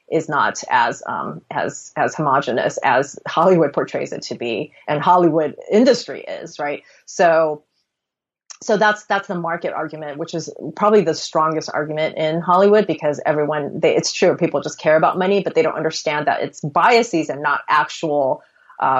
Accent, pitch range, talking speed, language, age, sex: American, 155-200 Hz, 170 wpm, English, 30-49, female